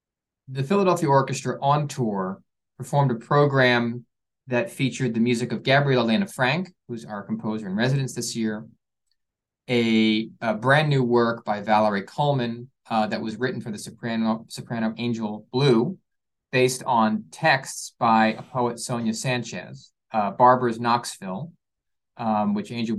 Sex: male